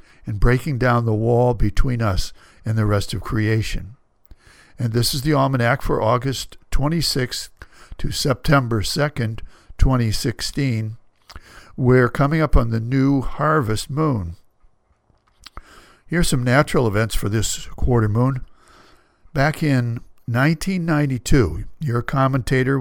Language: English